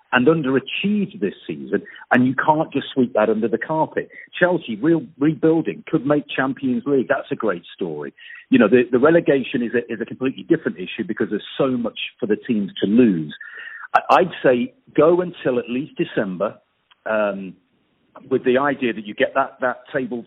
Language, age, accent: English, 50-69, British